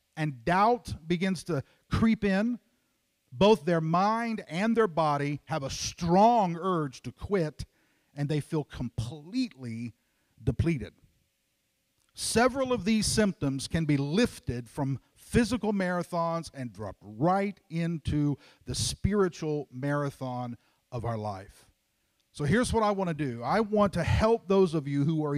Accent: American